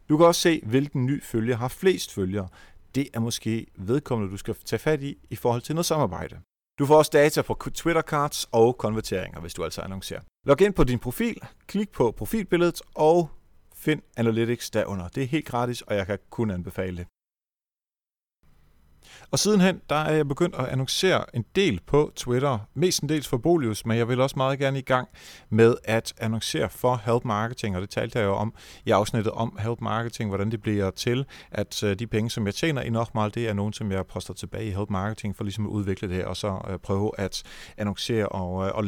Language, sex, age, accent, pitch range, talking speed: Danish, male, 40-59, native, 100-135 Hz, 205 wpm